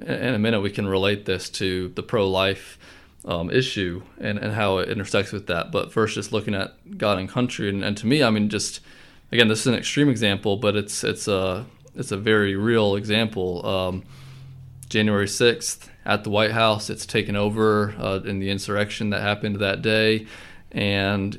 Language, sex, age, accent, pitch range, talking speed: English, male, 20-39, American, 95-115 Hz, 190 wpm